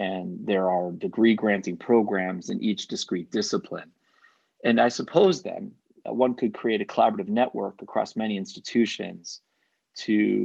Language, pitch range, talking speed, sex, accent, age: English, 100-125 Hz, 140 wpm, male, American, 30-49